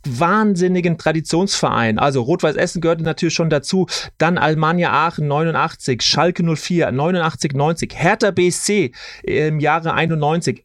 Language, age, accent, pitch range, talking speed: German, 30-49, German, 150-180 Hz, 120 wpm